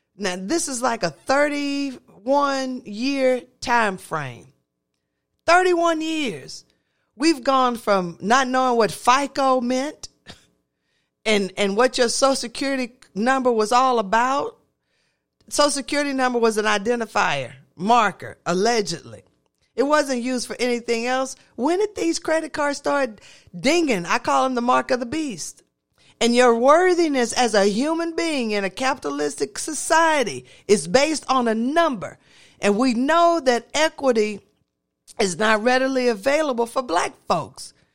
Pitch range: 210-275 Hz